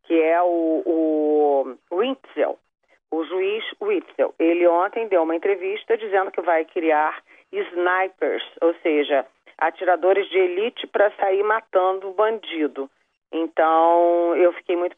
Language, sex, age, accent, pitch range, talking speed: Portuguese, female, 40-59, Brazilian, 160-195 Hz, 125 wpm